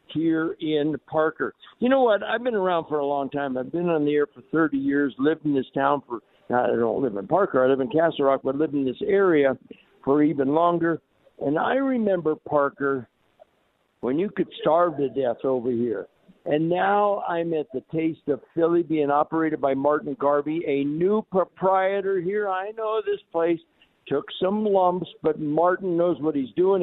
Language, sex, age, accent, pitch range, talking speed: English, male, 60-79, American, 145-190 Hz, 190 wpm